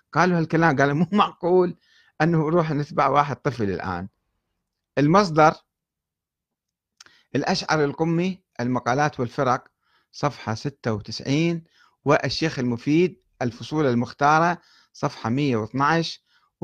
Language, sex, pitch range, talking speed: Arabic, male, 125-170 Hz, 85 wpm